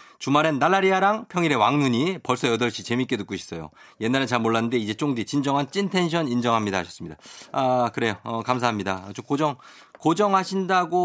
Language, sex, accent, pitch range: Korean, male, native, 110-170 Hz